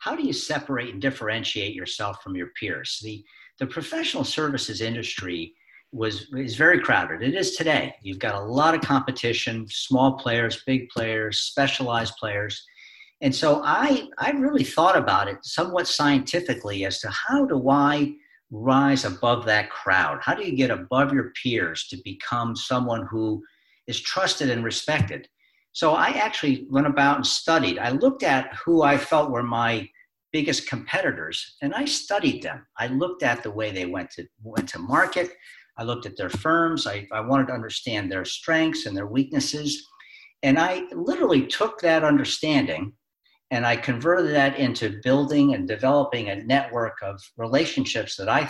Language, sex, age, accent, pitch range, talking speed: English, male, 50-69, American, 115-155 Hz, 165 wpm